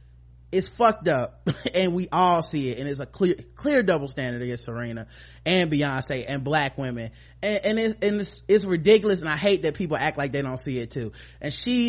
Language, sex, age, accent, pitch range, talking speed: English, male, 30-49, American, 130-200 Hz, 215 wpm